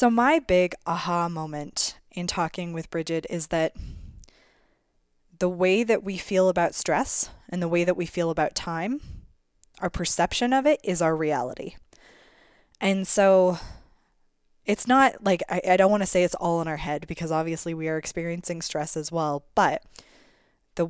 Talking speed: 170 wpm